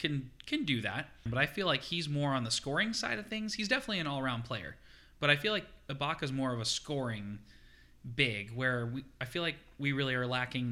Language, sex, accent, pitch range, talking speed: English, male, American, 120-150 Hz, 230 wpm